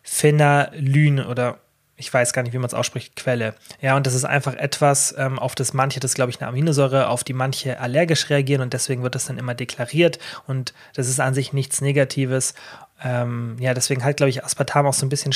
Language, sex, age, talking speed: German, male, 30-49, 210 wpm